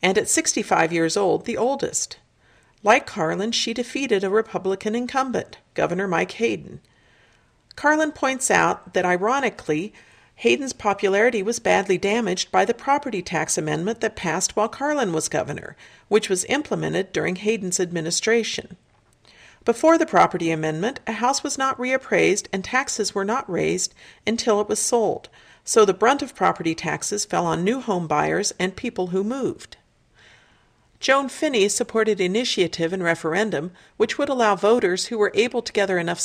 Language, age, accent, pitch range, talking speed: English, 50-69, American, 185-240 Hz, 155 wpm